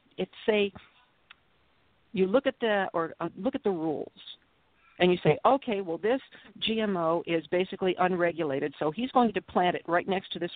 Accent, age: American, 50-69